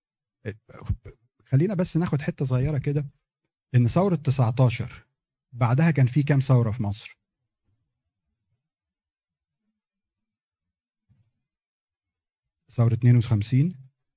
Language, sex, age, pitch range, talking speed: Arabic, male, 40-59, 115-145 Hz, 80 wpm